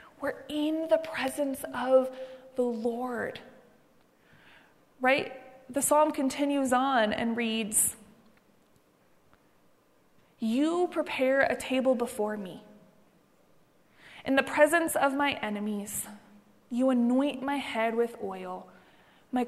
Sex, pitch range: female, 260-320 Hz